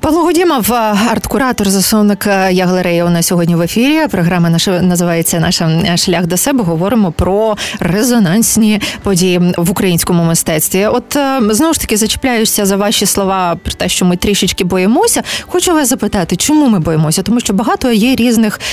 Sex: female